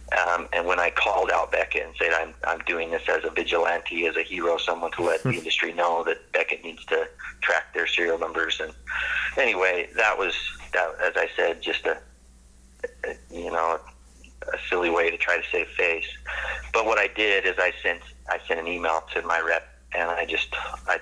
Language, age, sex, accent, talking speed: English, 30-49, male, American, 205 wpm